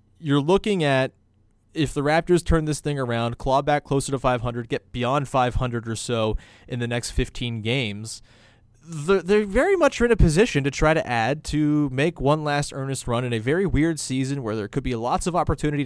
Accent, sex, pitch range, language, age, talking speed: American, male, 115-150 Hz, English, 30-49, 200 wpm